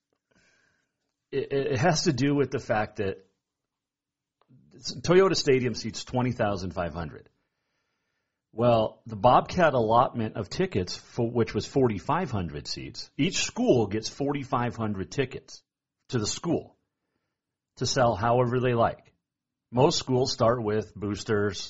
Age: 40-59